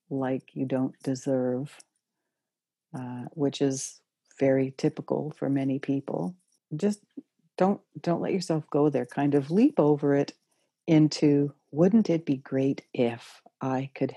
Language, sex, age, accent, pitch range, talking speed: English, female, 60-79, American, 135-165 Hz, 135 wpm